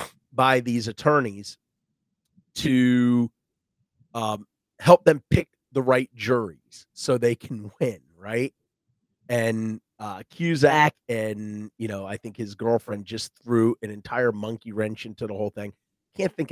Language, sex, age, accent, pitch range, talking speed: English, male, 30-49, American, 105-130 Hz, 140 wpm